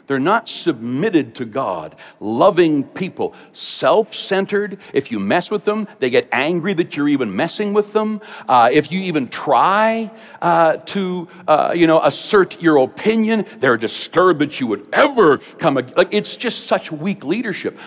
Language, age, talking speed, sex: English, 60-79, 165 wpm, male